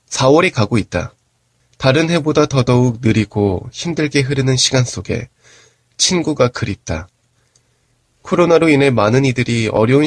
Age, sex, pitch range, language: 20-39, male, 105-135 Hz, Korean